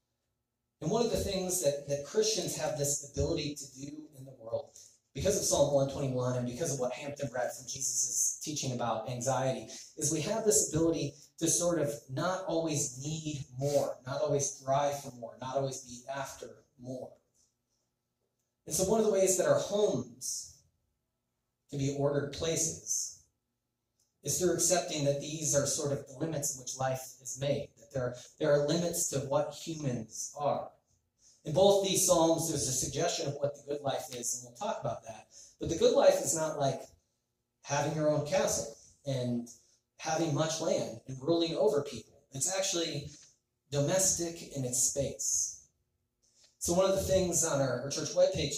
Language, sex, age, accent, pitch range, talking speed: English, male, 30-49, American, 130-155 Hz, 175 wpm